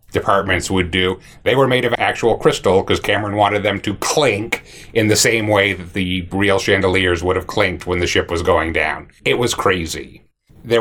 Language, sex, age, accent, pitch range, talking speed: English, male, 30-49, American, 100-115 Hz, 200 wpm